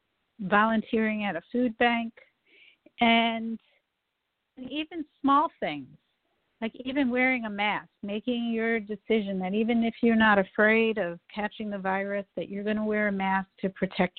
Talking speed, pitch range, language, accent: 150 wpm, 195-230 Hz, English, American